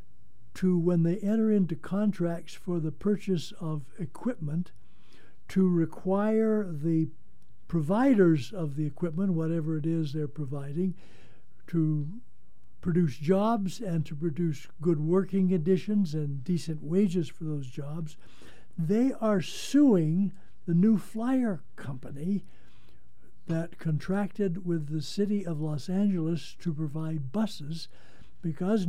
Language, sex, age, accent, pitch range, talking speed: English, male, 60-79, American, 155-195 Hz, 120 wpm